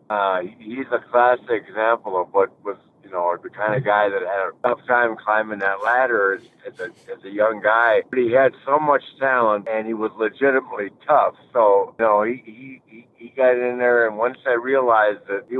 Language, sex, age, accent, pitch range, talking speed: English, male, 50-69, American, 105-125 Hz, 215 wpm